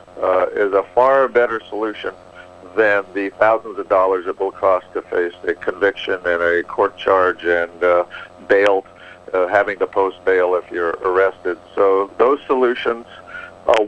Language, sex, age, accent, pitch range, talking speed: English, male, 50-69, American, 95-135 Hz, 160 wpm